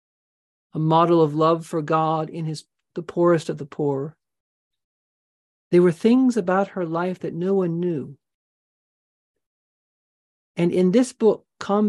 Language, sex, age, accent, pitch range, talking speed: English, male, 40-59, American, 160-195 Hz, 140 wpm